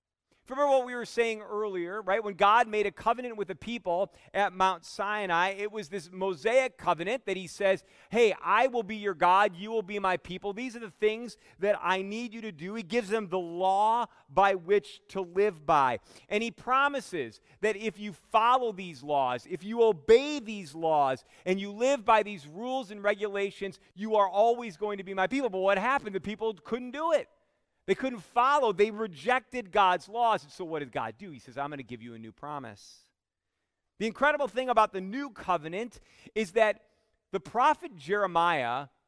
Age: 40-59